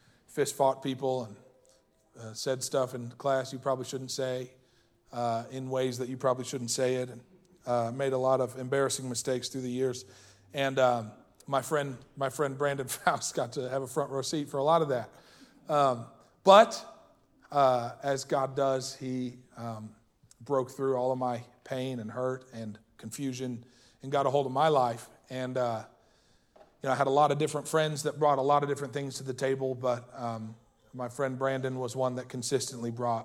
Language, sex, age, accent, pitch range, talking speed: English, male, 40-59, American, 125-135 Hz, 195 wpm